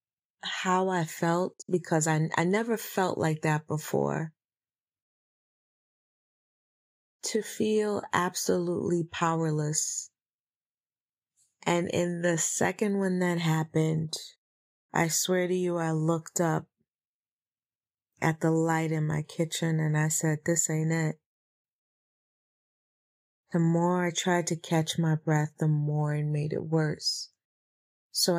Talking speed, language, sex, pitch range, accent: 120 wpm, English, female, 150-175 Hz, American